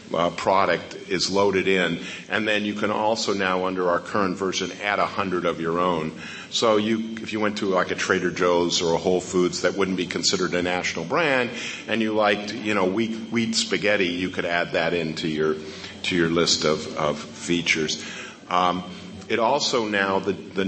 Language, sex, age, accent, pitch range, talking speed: English, male, 50-69, American, 90-105 Hz, 195 wpm